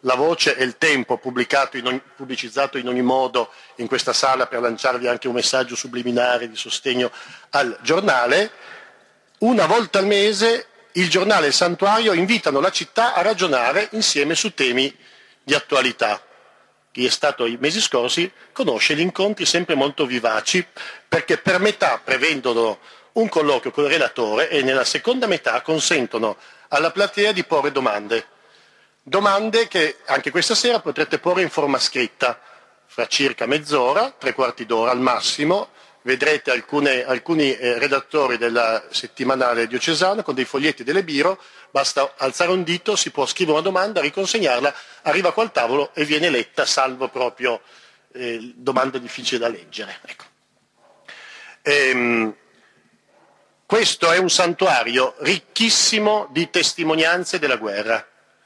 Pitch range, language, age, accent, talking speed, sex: 130-195 Hz, Italian, 40-59, native, 145 wpm, male